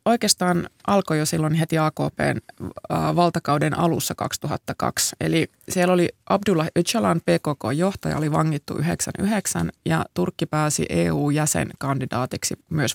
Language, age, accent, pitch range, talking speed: Finnish, 20-39, native, 145-175 Hz, 100 wpm